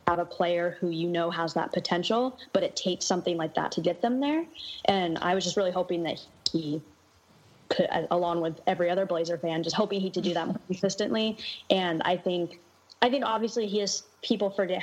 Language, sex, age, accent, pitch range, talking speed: English, female, 20-39, American, 165-195 Hz, 210 wpm